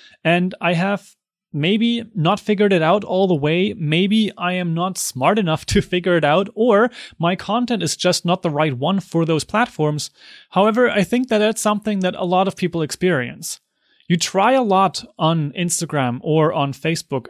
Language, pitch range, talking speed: English, 160-200 Hz, 185 wpm